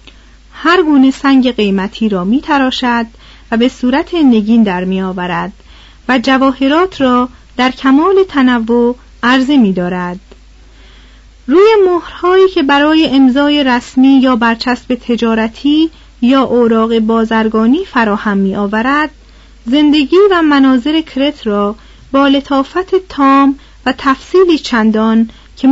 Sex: female